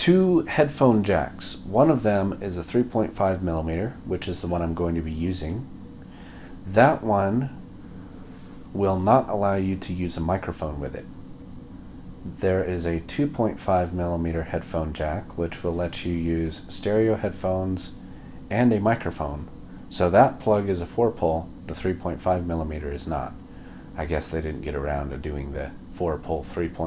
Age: 40-59